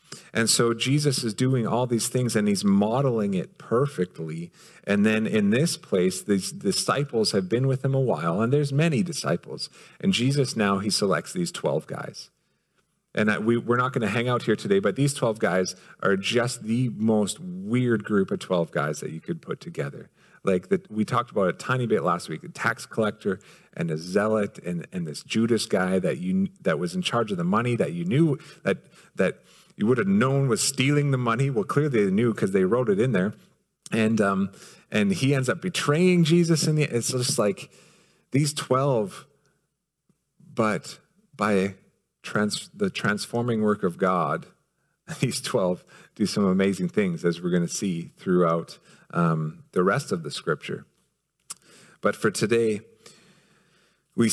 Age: 40-59